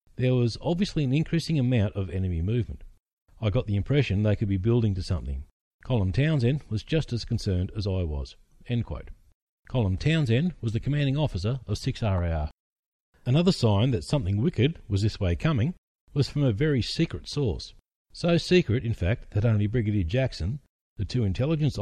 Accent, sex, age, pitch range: Australian, male, 40-59, 95-130 Hz